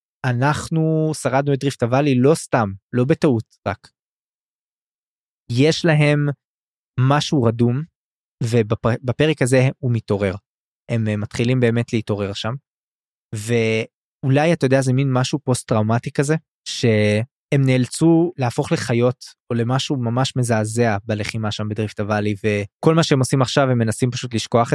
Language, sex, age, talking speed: Hebrew, male, 20-39, 130 wpm